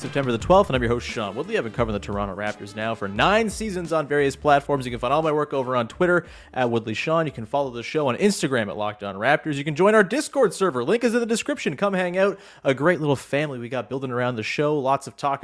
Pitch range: 120-170 Hz